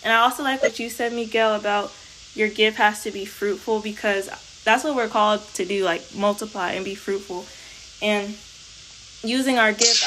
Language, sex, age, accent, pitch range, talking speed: English, female, 20-39, American, 200-230 Hz, 185 wpm